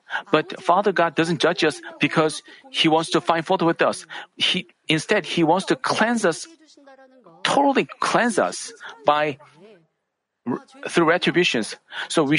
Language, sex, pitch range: Korean, male, 145-195 Hz